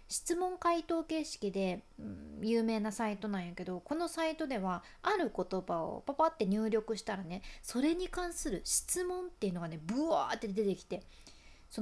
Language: Japanese